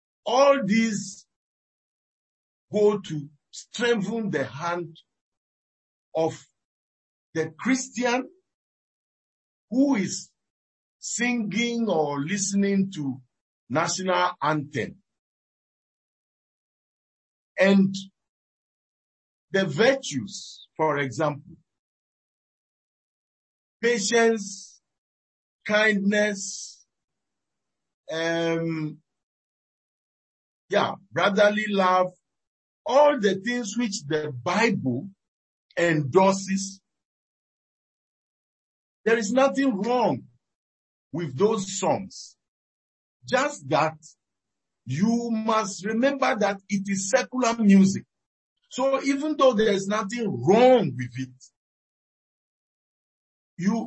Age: 50-69